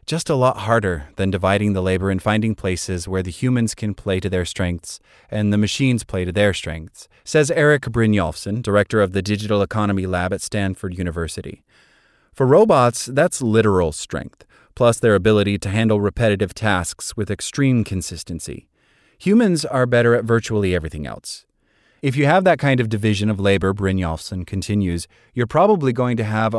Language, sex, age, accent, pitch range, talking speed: English, male, 30-49, American, 95-125 Hz, 170 wpm